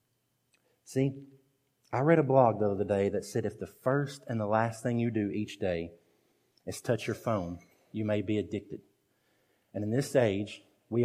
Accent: American